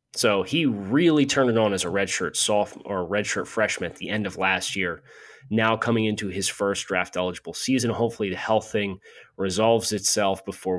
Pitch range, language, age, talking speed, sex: 100-130 Hz, English, 30-49, 170 wpm, male